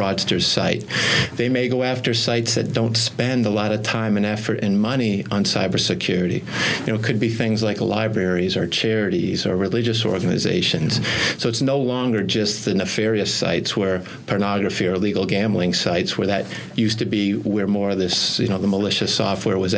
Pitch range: 100-115 Hz